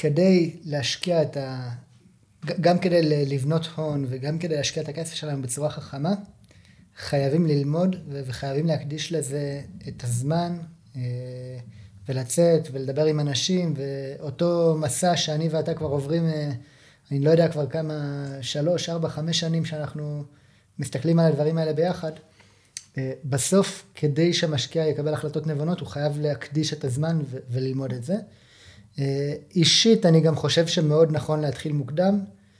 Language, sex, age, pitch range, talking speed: Hebrew, male, 20-39, 135-165 Hz, 130 wpm